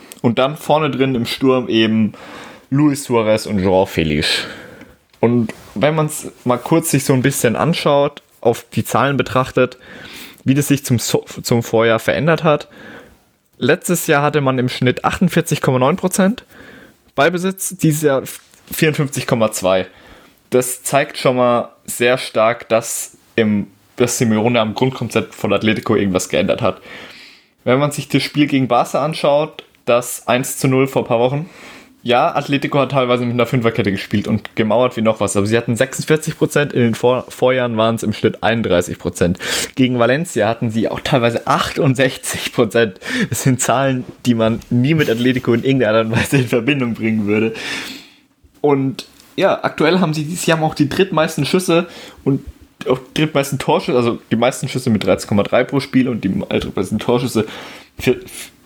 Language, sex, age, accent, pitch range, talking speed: German, male, 20-39, German, 115-145 Hz, 165 wpm